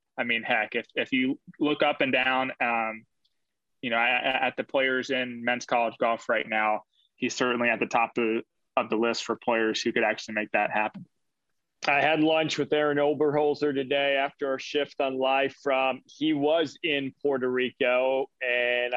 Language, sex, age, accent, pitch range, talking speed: English, male, 30-49, American, 130-175 Hz, 185 wpm